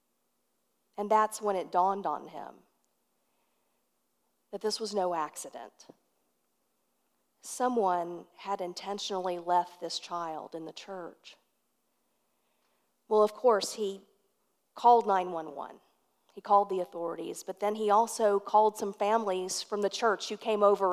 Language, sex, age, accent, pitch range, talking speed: English, female, 40-59, American, 180-215 Hz, 125 wpm